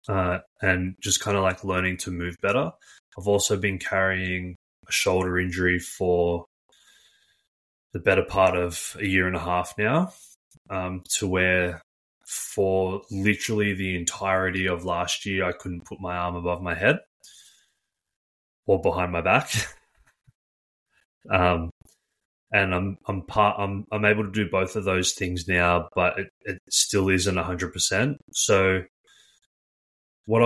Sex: male